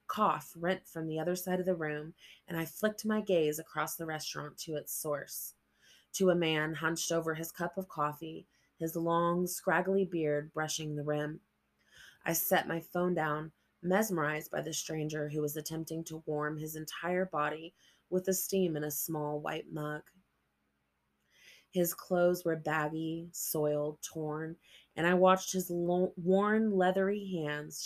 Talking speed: 160 wpm